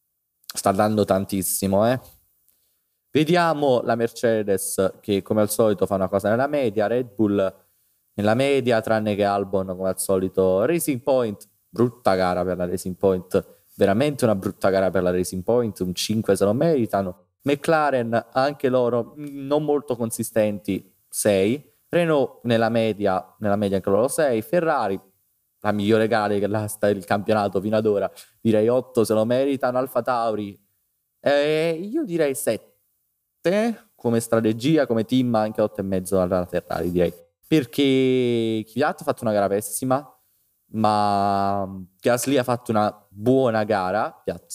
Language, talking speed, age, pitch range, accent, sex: Italian, 145 wpm, 20-39, 95-120 Hz, native, male